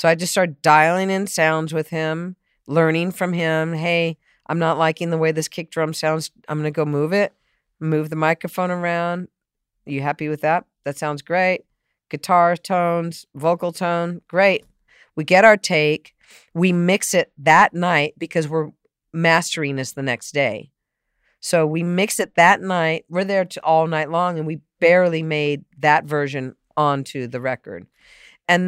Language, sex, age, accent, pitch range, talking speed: English, female, 50-69, American, 150-185 Hz, 175 wpm